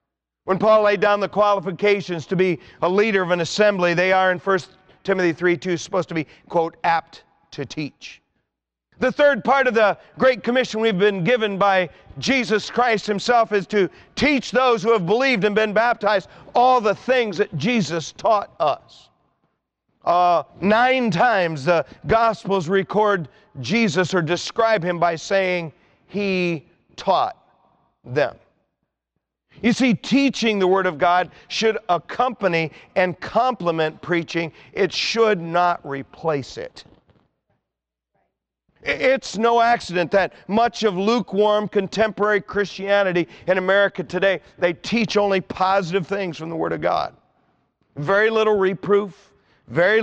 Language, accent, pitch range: English, American, 170-215 Hz